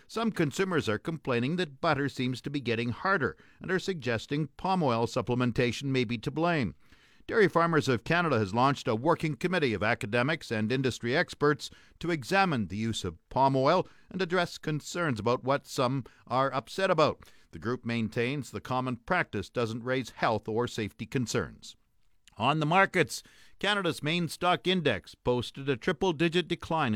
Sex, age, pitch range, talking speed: male, 50-69, 120-165 Hz, 165 wpm